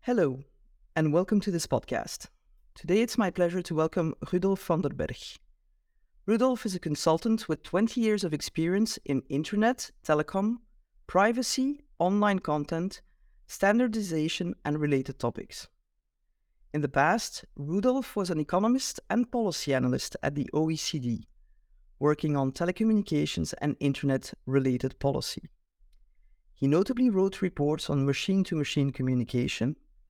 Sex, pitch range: female, 140-210 Hz